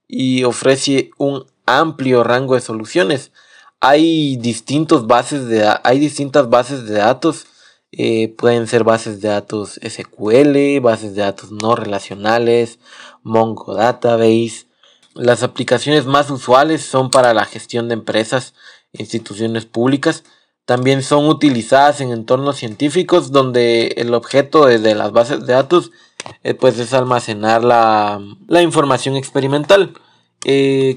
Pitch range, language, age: 115-145 Hz, Spanish, 20-39